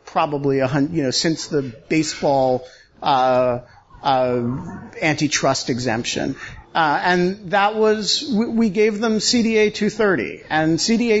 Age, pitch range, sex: 50-69, 145-200 Hz, male